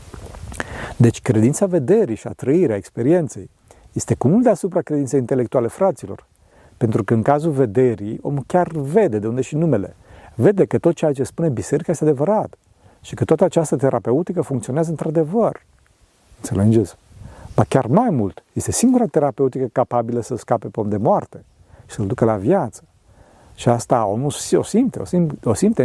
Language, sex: Romanian, male